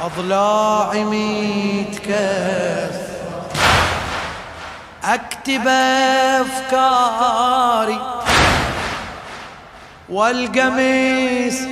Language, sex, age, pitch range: Arabic, male, 30-49, 245-325 Hz